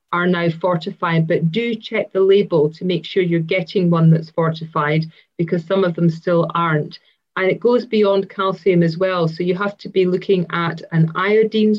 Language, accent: English, British